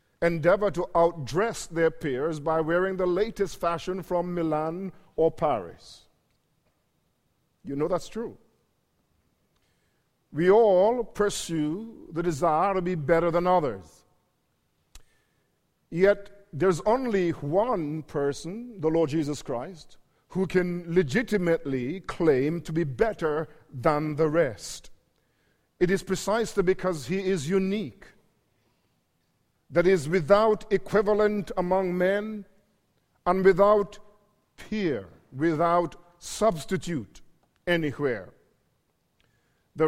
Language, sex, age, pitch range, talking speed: English, male, 50-69, 165-200 Hz, 100 wpm